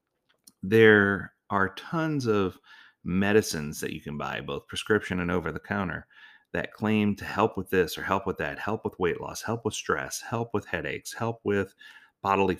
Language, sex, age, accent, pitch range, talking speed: English, male, 40-59, American, 85-115 Hz, 170 wpm